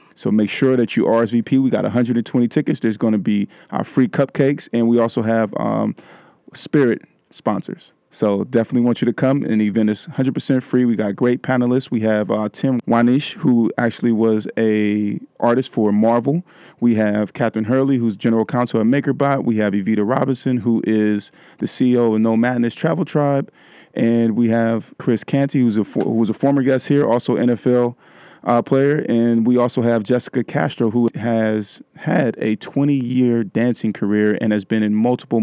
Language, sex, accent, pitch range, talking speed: English, male, American, 110-125 Hz, 185 wpm